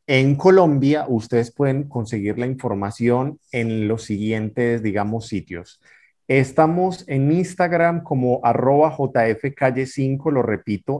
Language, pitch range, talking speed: Spanish, 115-140 Hz, 110 wpm